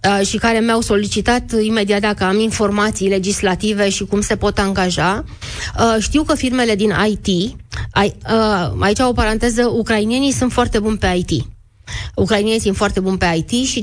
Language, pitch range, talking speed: Romanian, 185-225 Hz, 150 wpm